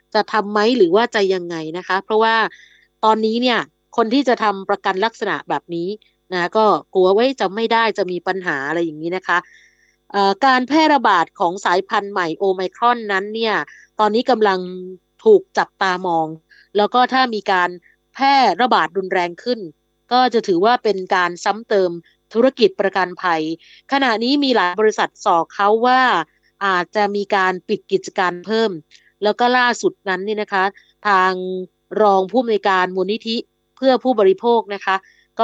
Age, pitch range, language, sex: 20-39, 185-225 Hz, Thai, female